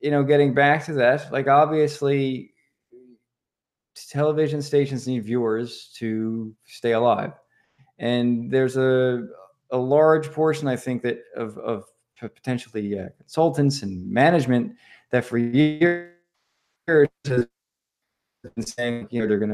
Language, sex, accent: English, male, American